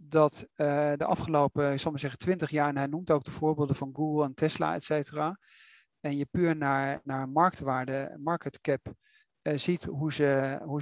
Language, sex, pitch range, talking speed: Dutch, male, 150-185 Hz, 185 wpm